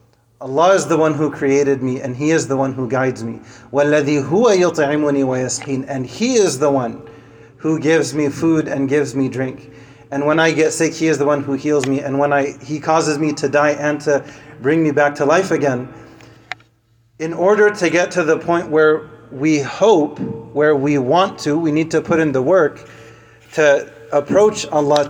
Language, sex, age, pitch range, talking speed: English, male, 30-49, 140-160 Hz, 190 wpm